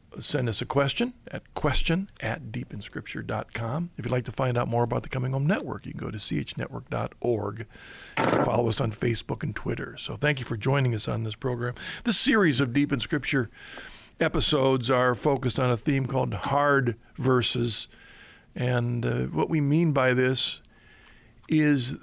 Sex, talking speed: male, 170 wpm